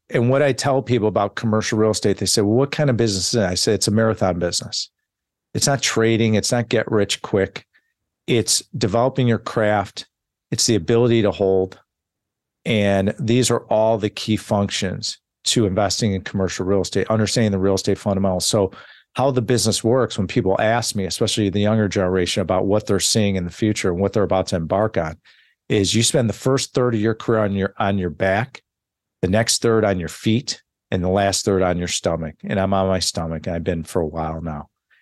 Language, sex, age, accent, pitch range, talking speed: English, male, 40-59, American, 95-115 Hz, 210 wpm